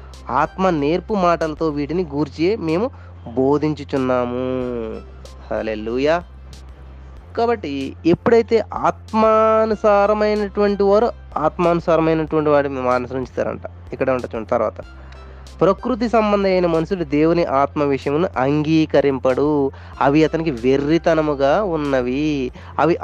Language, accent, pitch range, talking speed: Telugu, native, 105-160 Hz, 80 wpm